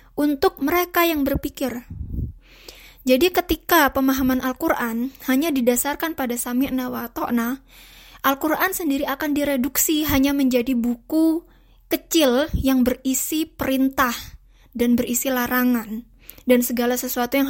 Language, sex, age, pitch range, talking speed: Indonesian, female, 20-39, 240-290 Hz, 110 wpm